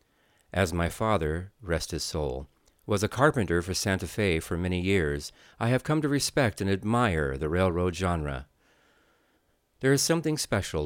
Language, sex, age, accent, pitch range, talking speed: English, male, 40-59, American, 85-120 Hz, 160 wpm